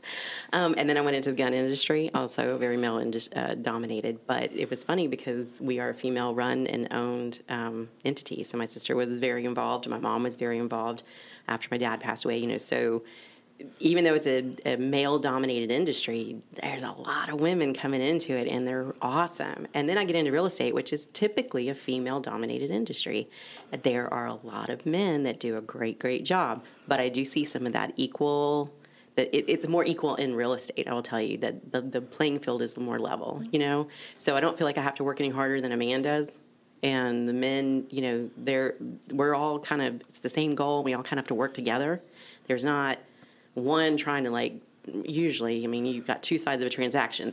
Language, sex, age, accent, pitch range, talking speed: English, female, 30-49, American, 120-150 Hz, 215 wpm